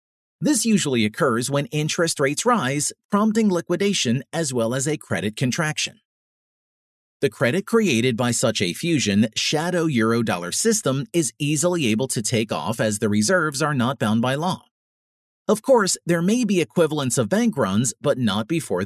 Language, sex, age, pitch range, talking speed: English, male, 40-59, 120-180 Hz, 160 wpm